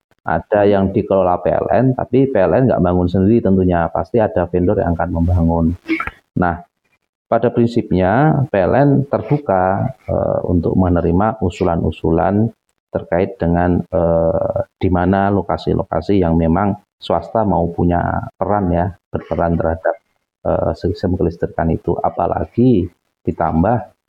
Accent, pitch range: native, 85-115 Hz